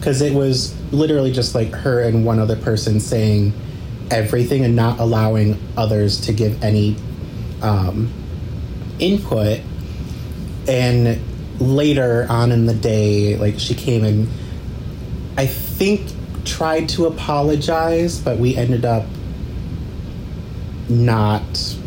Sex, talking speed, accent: male, 115 wpm, American